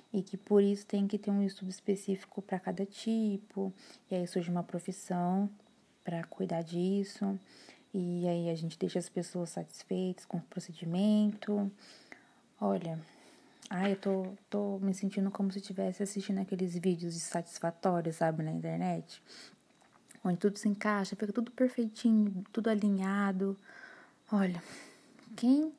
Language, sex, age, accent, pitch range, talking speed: Portuguese, female, 20-39, Brazilian, 180-215 Hz, 140 wpm